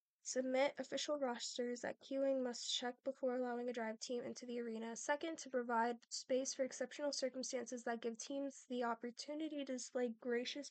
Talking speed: 170 wpm